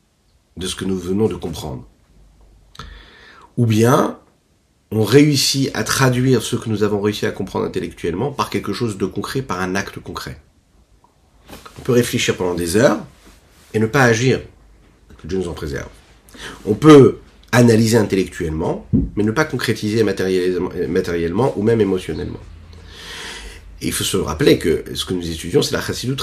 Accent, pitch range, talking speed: French, 85-120 Hz, 160 wpm